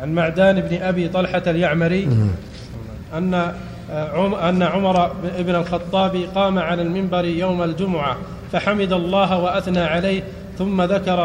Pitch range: 180-195 Hz